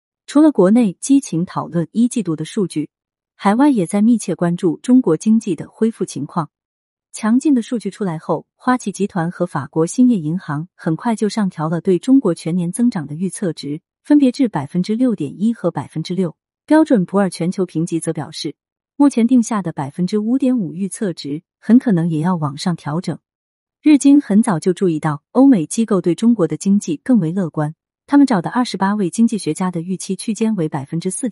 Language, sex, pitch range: Chinese, female, 165-230 Hz